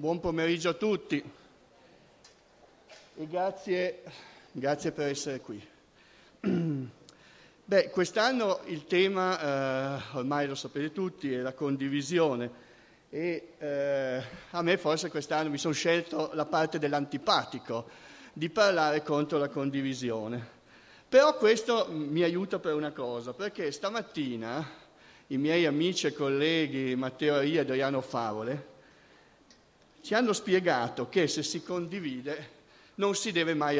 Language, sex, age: Italian, male, 50-69